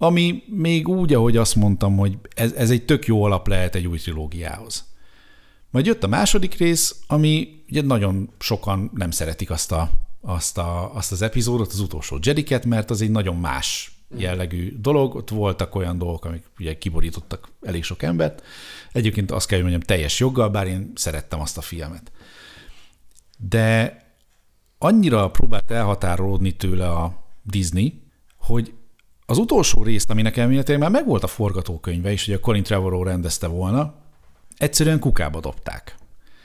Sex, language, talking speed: male, Hungarian, 155 wpm